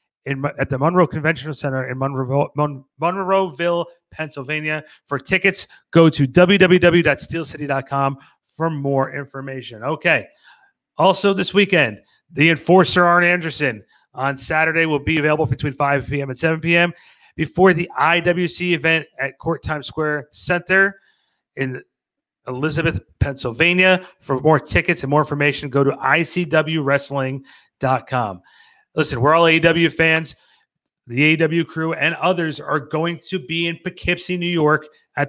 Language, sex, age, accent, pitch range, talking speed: English, male, 40-59, American, 140-175 Hz, 130 wpm